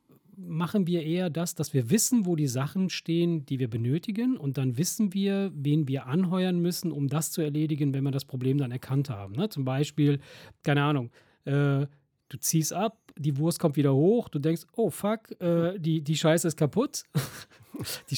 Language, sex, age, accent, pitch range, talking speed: German, male, 40-59, German, 135-160 Hz, 190 wpm